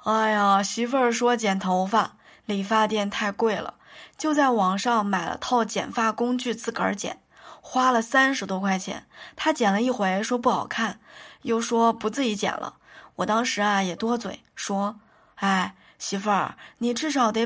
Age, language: 20-39, Chinese